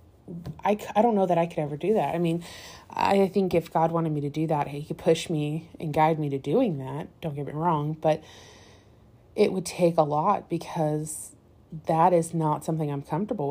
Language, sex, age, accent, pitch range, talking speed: English, female, 30-49, American, 155-180 Hz, 215 wpm